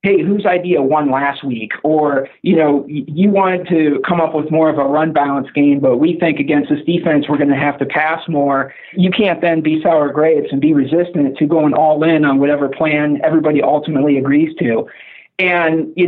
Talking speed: 210 wpm